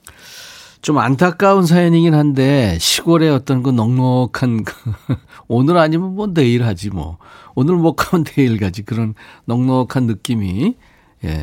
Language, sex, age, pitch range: Korean, male, 40-59, 100-140 Hz